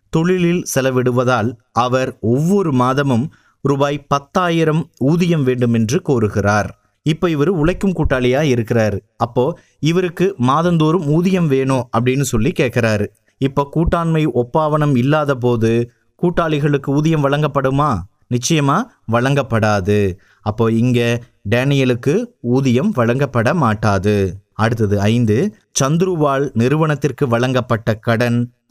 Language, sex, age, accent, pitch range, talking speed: Tamil, male, 30-49, native, 115-150 Hz, 95 wpm